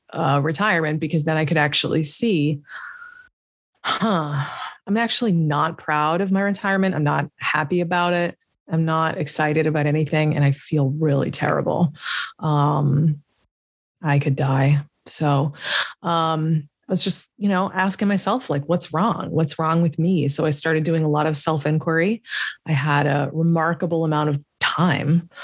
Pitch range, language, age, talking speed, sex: 150-180 Hz, English, 20-39, 155 wpm, female